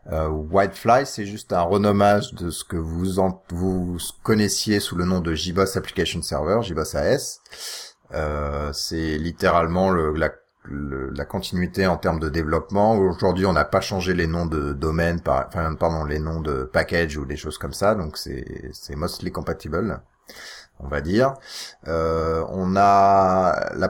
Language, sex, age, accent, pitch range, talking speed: French, male, 30-49, French, 80-100 Hz, 170 wpm